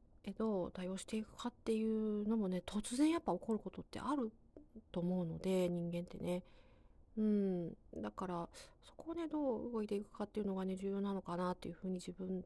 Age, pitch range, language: 40-59, 175-225 Hz, Japanese